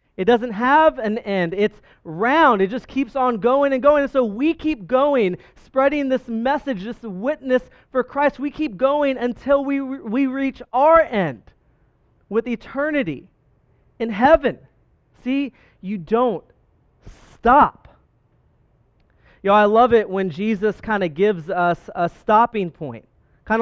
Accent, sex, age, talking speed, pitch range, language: American, male, 30-49, 145 wpm, 195-255 Hz, English